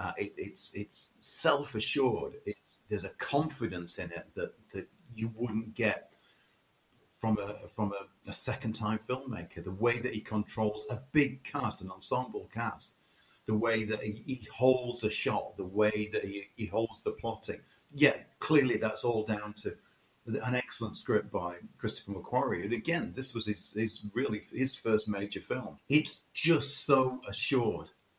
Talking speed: 165 wpm